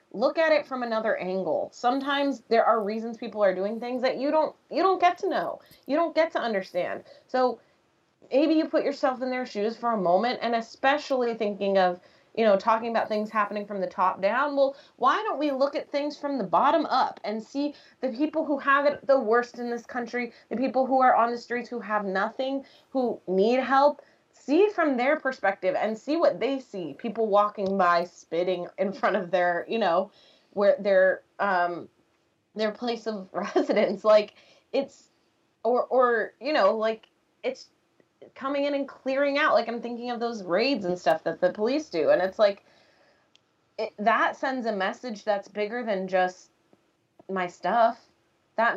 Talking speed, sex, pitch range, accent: 190 wpm, female, 210-280 Hz, American